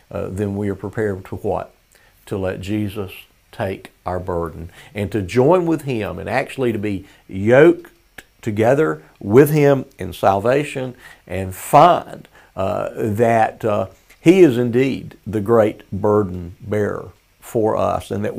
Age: 50-69